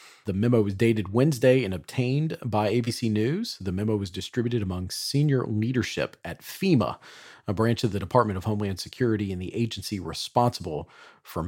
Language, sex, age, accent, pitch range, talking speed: English, male, 40-59, American, 100-130 Hz, 165 wpm